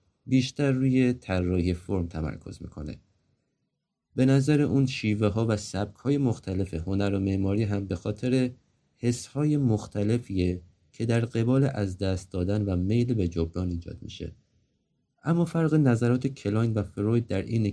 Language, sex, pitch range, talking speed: Persian, male, 95-125 Hz, 150 wpm